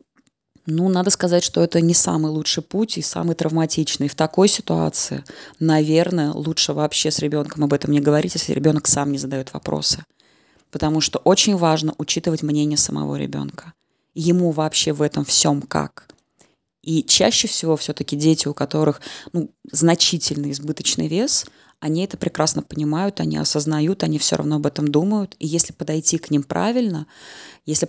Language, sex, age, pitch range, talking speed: Russian, female, 20-39, 150-175 Hz, 160 wpm